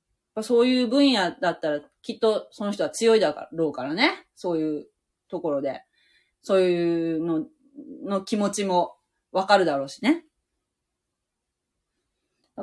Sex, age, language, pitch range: female, 30-49, Japanese, 190-295 Hz